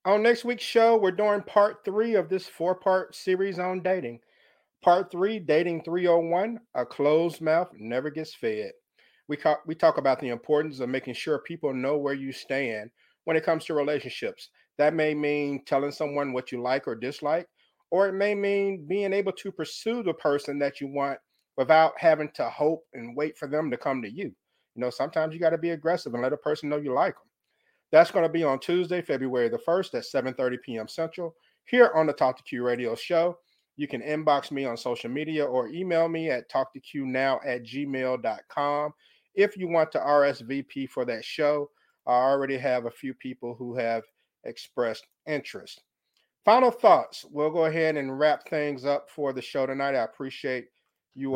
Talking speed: 190 wpm